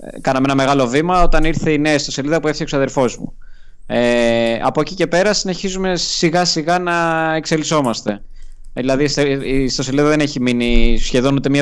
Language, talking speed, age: Greek, 180 wpm, 20-39